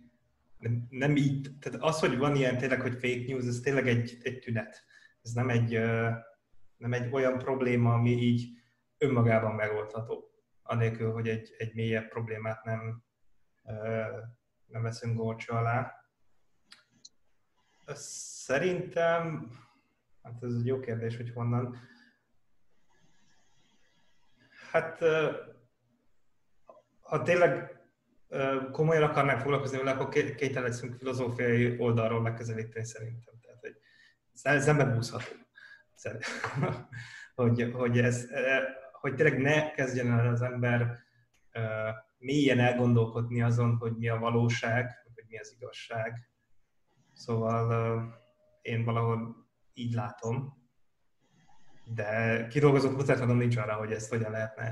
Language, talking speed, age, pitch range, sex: Hungarian, 110 wpm, 30-49, 115-130 Hz, male